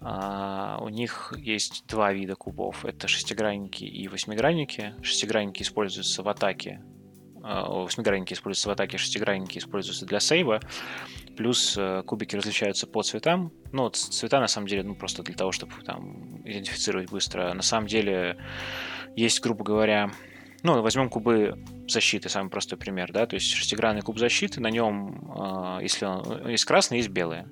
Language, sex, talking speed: Russian, male, 140 wpm